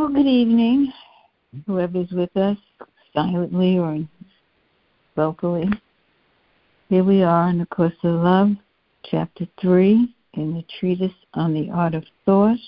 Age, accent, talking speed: 60-79, American, 130 wpm